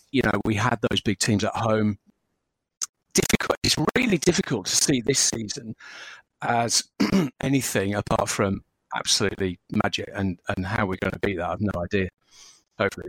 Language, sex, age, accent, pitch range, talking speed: English, male, 40-59, British, 100-125 Hz, 155 wpm